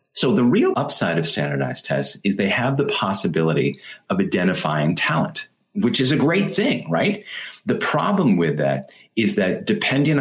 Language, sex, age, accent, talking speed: English, male, 30-49, American, 165 wpm